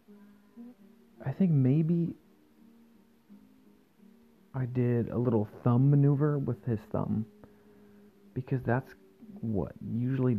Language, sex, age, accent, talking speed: English, male, 40-59, American, 90 wpm